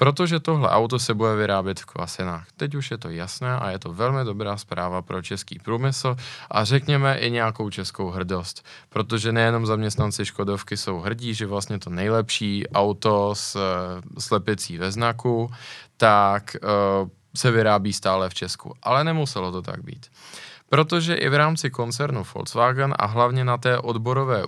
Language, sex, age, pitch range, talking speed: Czech, male, 20-39, 100-130 Hz, 165 wpm